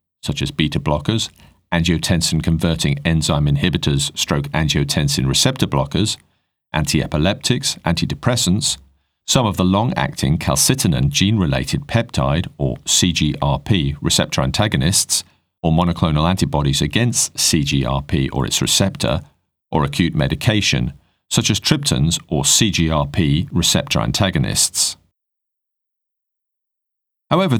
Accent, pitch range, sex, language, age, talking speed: British, 75-100 Hz, male, English, 40-59, 95 wpm